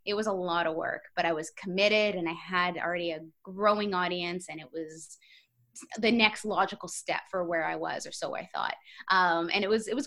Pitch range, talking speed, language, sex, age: 170-205 Hz, 225 wpm, English, female, 20-39